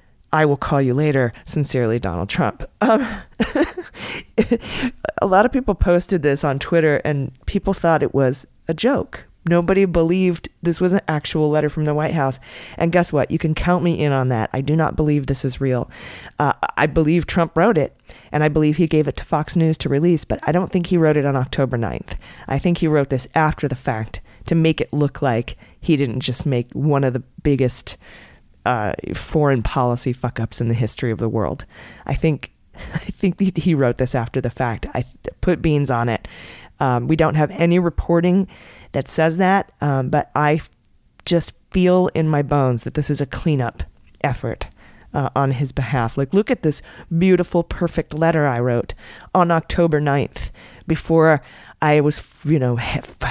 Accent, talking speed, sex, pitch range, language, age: American, 195 wpm, female, 130-165 Hz, English, 30-49